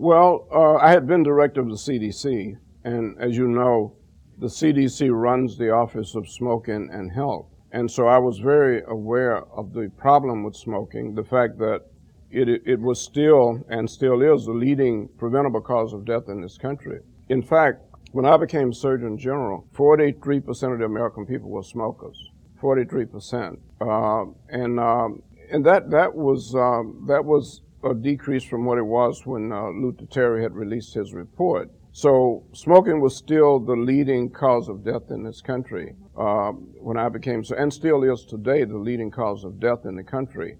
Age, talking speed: 50-69, 175 wpm